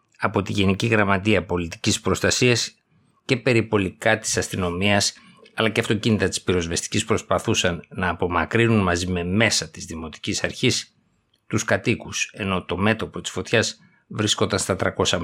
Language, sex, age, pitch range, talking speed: Greek, male, 50-69, 90-115 Hz, 135 wpm